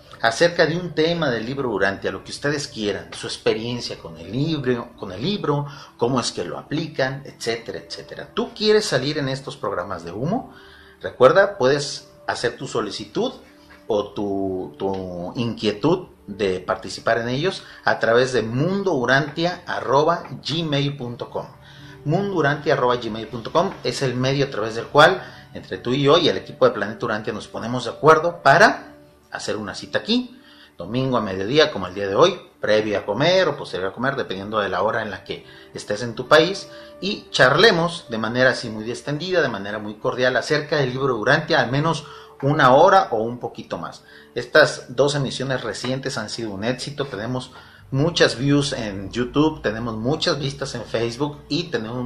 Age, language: 40-59, Spanish